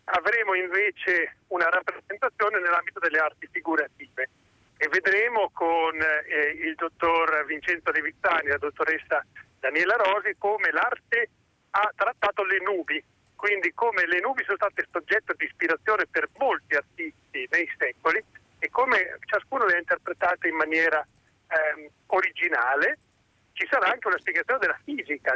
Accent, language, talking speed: native, Italian, 140 wpm